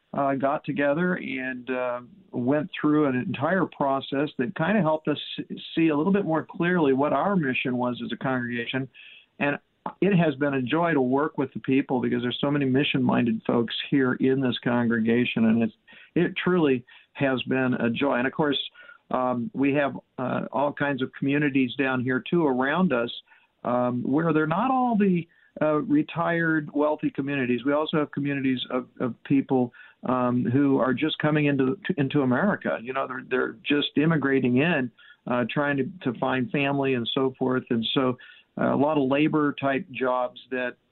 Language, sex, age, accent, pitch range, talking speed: English, male, 50-69, American, 125-150 Hz, 180 wpm